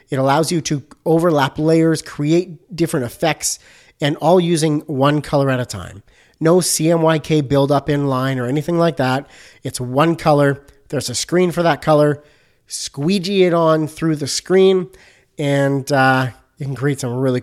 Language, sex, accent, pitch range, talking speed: English, male, American, 135-165 Hz, 165 wpm